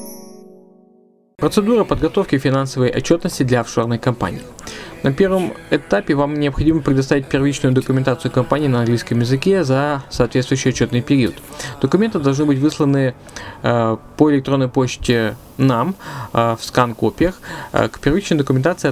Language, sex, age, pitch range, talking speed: Russian, male, 20-39, 125-160 Hz, 125 wpm